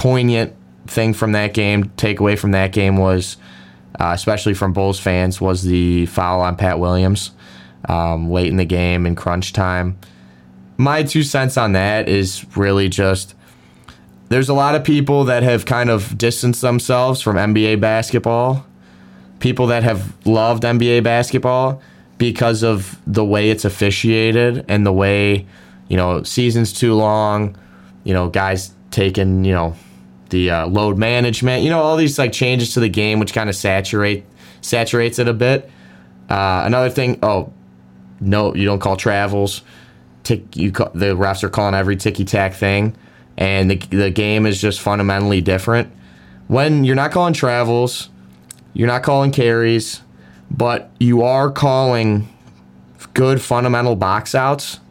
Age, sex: 20-39, male